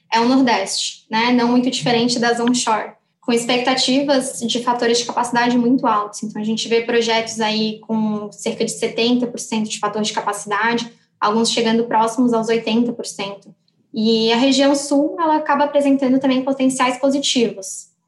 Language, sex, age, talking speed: Portuguese, female, 10-29, 155 wpm